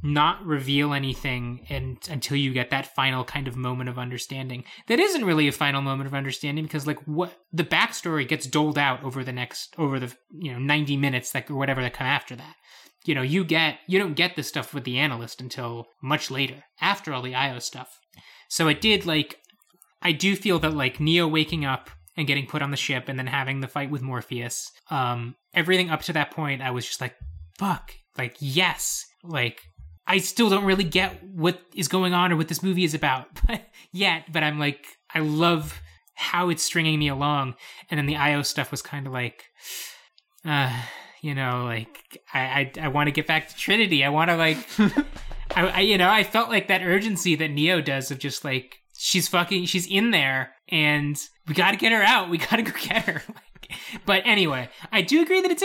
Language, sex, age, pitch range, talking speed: English, male, 20-39, 135-180 Hz, 210 wpm